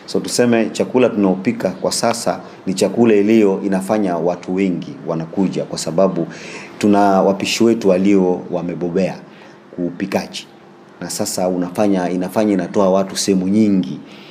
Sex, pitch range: male, 90-110 Hz